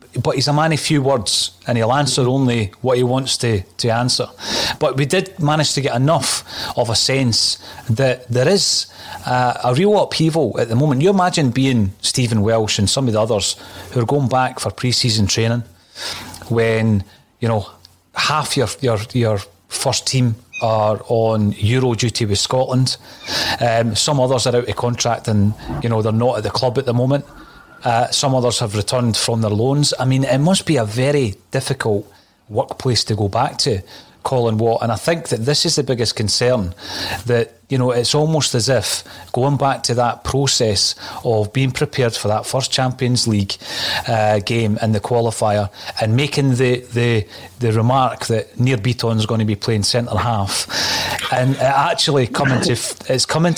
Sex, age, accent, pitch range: male, 30-49, British, 110-135 Hz